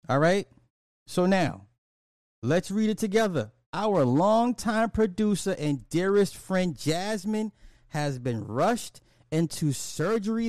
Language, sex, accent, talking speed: English, male, American, 115 wpm